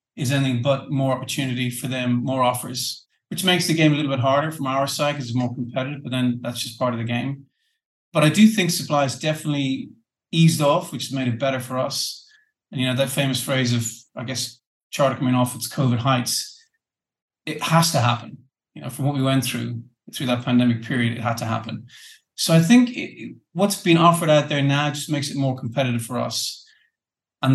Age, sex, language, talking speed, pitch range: 30-49, male, English, 215 wpm, 125-150 Hz